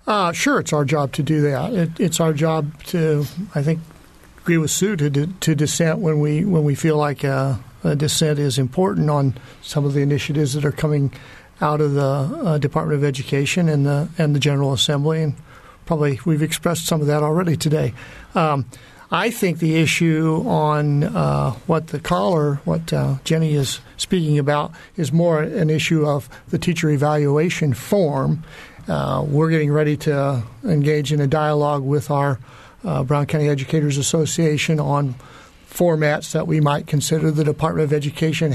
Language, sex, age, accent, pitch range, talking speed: English, male, 50-69, American, 145-160 Hz, 180 wpm